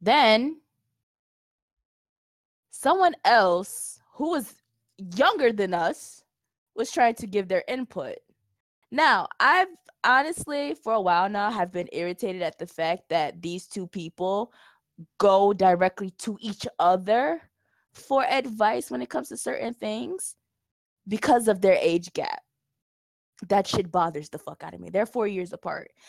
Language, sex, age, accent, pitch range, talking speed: English, female, 20-39, American, 170-220 Hz, 140 wpm